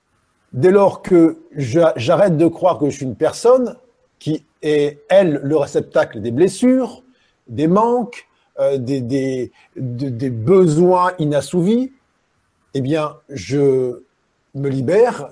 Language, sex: French, male